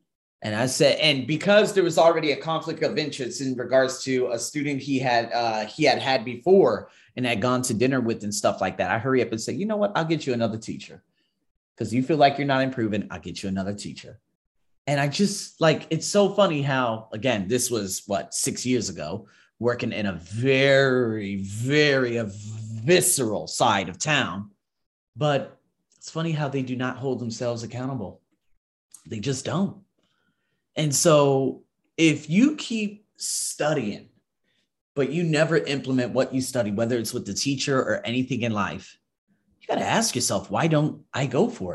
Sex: male